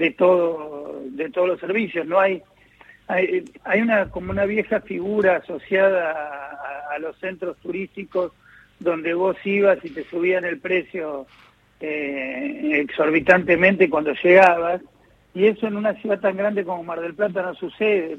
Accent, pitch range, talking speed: Argentinian, 160-195 Hz, 150 wpm